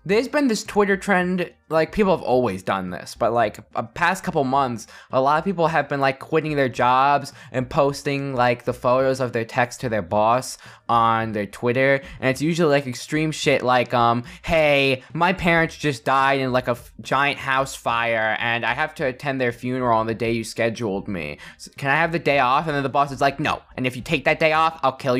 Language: English